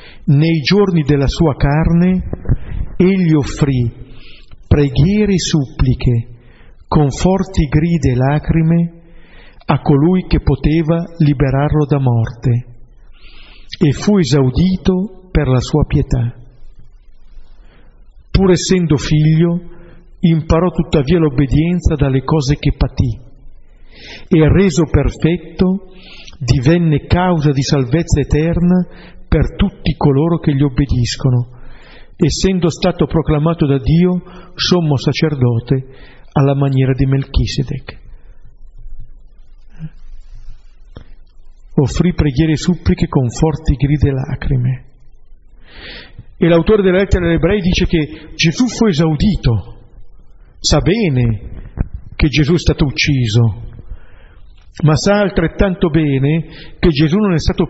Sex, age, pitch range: male, 50-69, 130-170 Hz